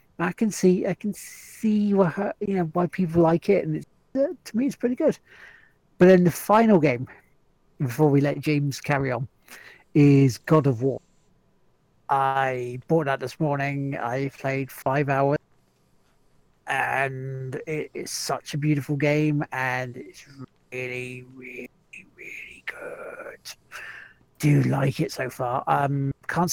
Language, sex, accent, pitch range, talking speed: English, male, British, 135-170 Hz, 145 wpm